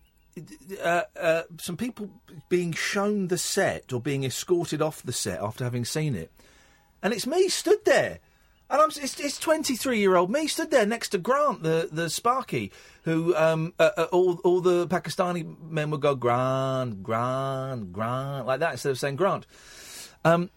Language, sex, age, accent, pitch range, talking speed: English, male, 40-59, British, 130-205 Hz, 175 wpm